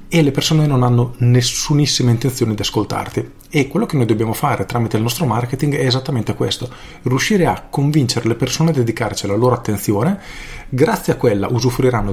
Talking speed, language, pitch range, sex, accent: 180 wpm, Italian, 110-145 Hz, male, native